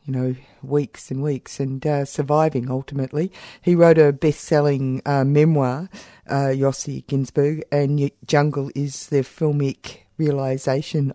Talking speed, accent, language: 120 wpm, Australian, English